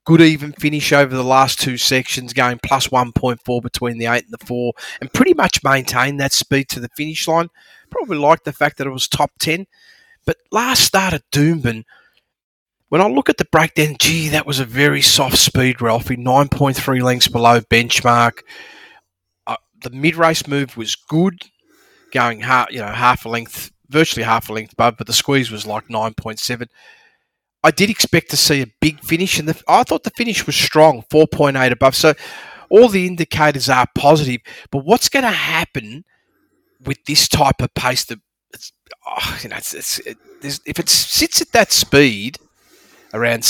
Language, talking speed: English, 180 wpm